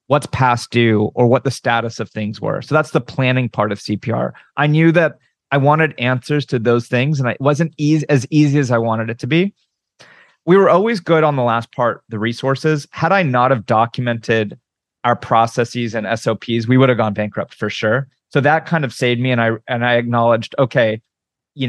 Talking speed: 215 wpm